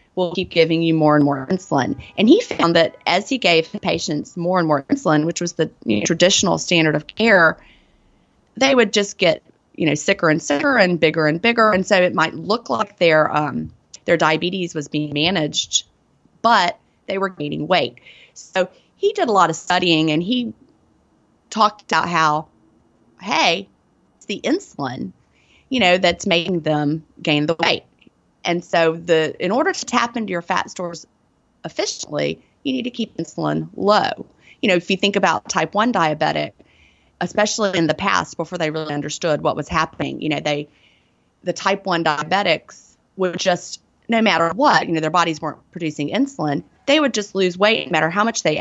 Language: English